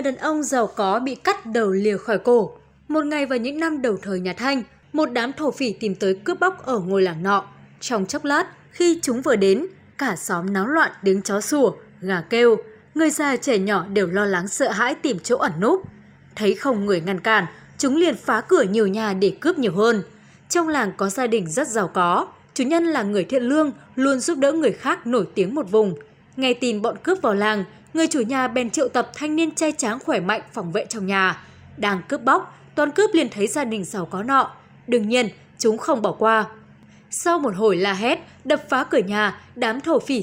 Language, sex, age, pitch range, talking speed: Vietnamese, female, 20-39, 205-295 Hz, 225 wpm